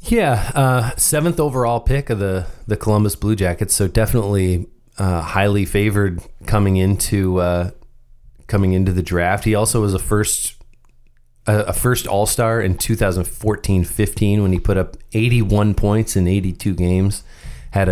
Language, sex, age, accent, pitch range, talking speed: English, male, 30-49, American, 95-120 Hz, 145 wpm